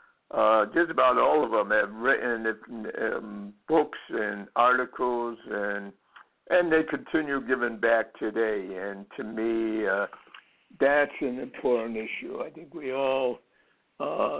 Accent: American